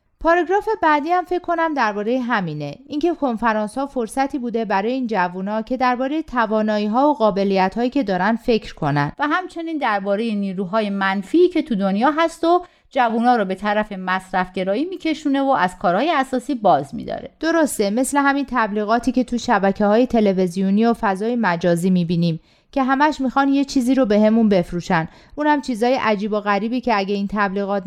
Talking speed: 180 wpm